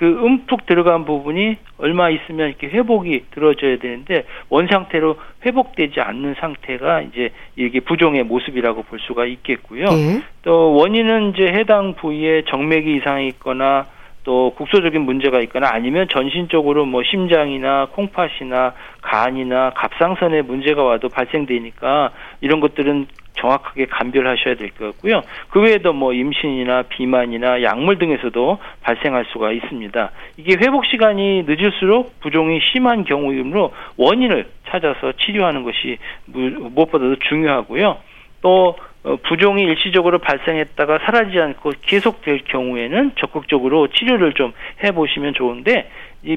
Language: Korean